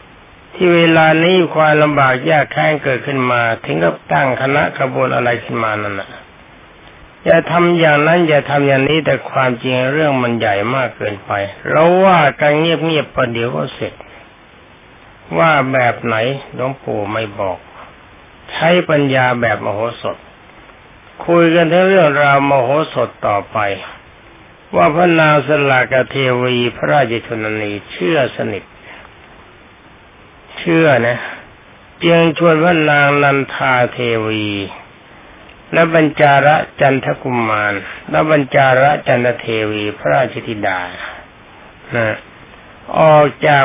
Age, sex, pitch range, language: 60-79, male, 115-155 Hz, Thai